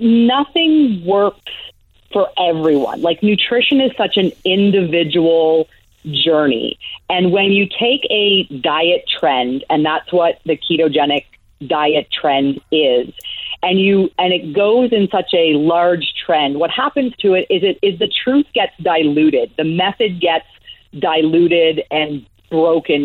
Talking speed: 140 wpm